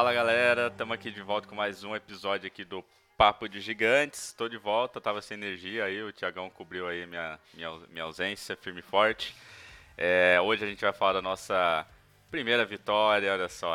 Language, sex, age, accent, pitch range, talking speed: Portuguese, male, 20-39, Brazilian, 95-115 Hz, 195 wpm